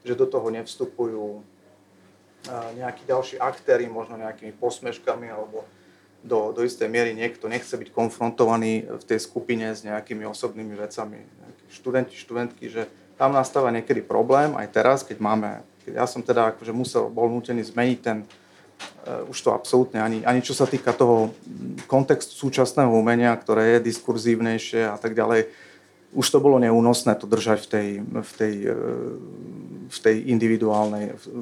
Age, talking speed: 40-59, 150 wpm